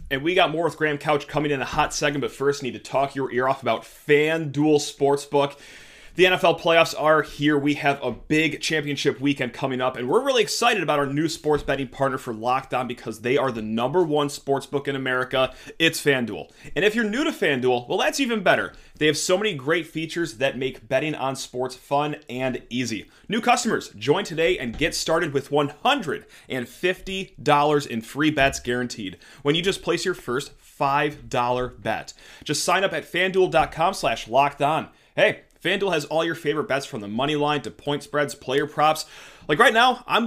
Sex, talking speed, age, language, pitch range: male, 195 wpm, 30-49, English, 135-170 Hz